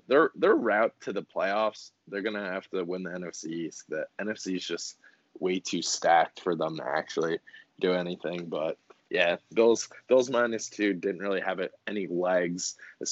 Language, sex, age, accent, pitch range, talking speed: English, male, 20-39, American, 95-115 Hz, 185 wpm